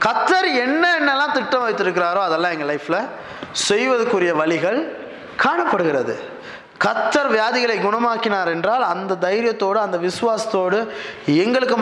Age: 20-39